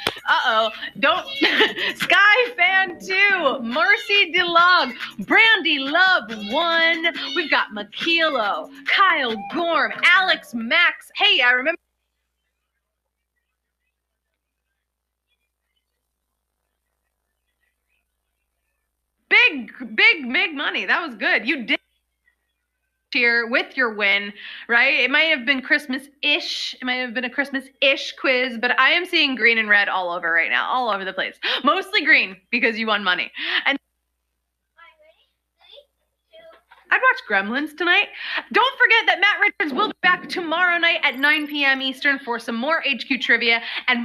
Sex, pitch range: female, 225-335 Hz